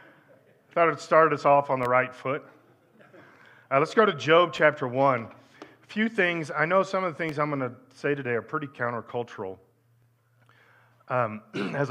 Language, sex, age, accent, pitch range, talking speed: English, male, 40-59, American, 115-155 Hz, 170 wpm